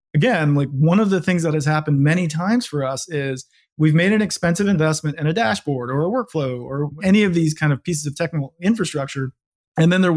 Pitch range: 145-180 Hz